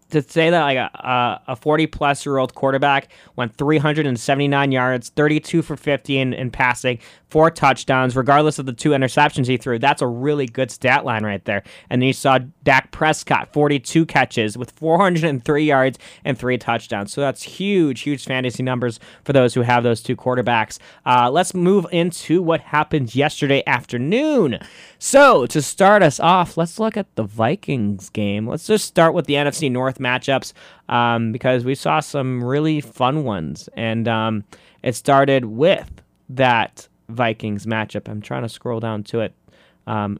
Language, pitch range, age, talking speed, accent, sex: English, 125-155 Hz, 20-39, 175 wpm, American, male